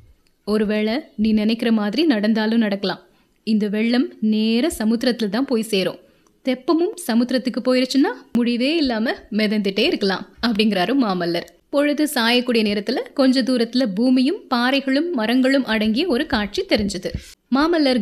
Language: Tamil